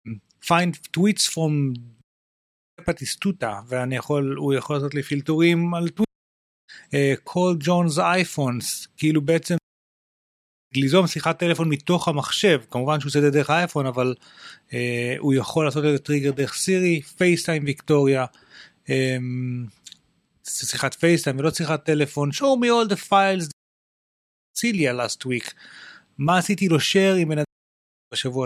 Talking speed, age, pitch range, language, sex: 115 wpm, 30-49, 130-170 Hz, Hebrew, male